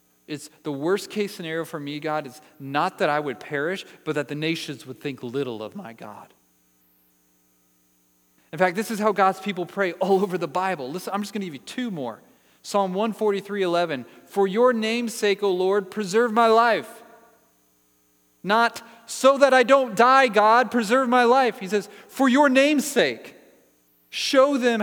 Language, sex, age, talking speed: English, male, 40-59, 175 wpm